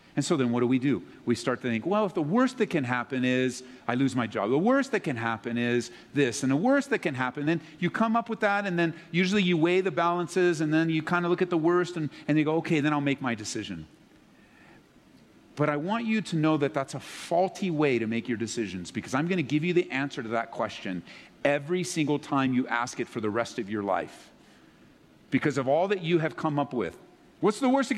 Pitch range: 125-180 Hz